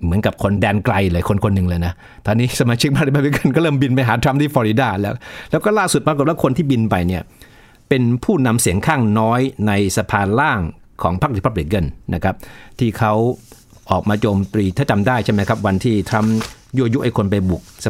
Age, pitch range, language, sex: 60-79, 95-115 Hz, Thai, male